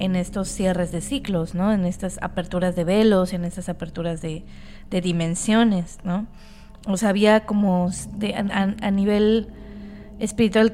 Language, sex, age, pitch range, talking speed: Spanish, female, 20-39, 180-215 Hz, 150 wpm